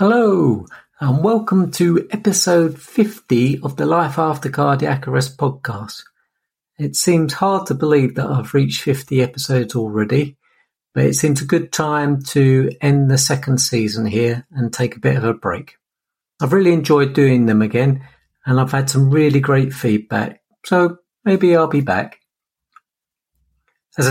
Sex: male